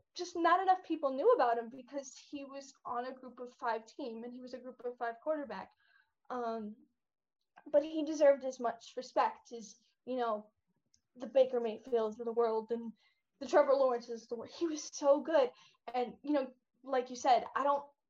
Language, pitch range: English, 235-280 Hz